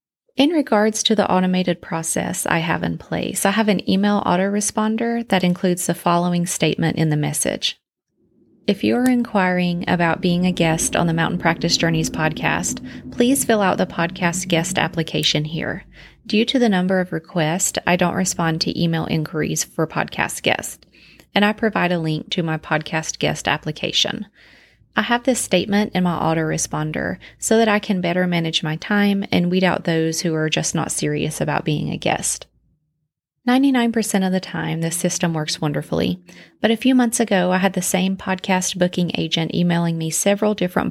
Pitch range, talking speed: 165-205 Hz, 180 wpm